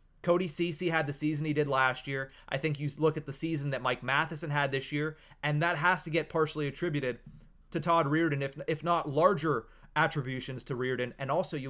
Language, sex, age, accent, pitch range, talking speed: English, male, 30-49, American, 140-170 Hz, 210 wpm